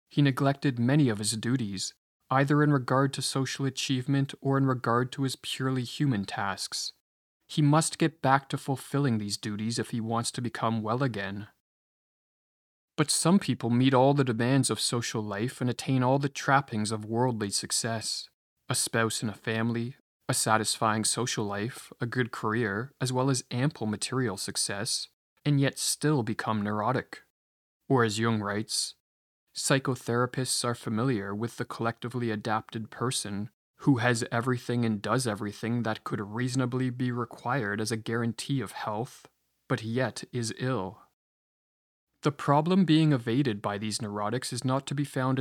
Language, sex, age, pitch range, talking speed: English, male, 20-39, 110-130 Hz, 160 wpm